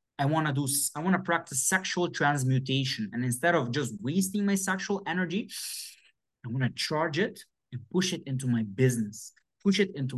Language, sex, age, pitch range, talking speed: English, male, 20-39, 125-175 Hz, 175 wpm